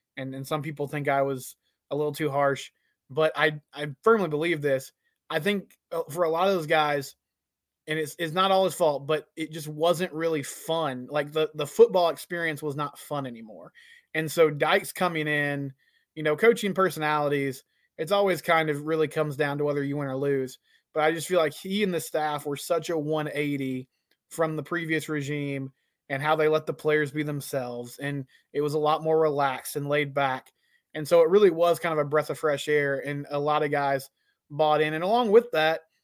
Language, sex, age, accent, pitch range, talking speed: English, male, 20-39, American, 140-165 Hz, 210 wpm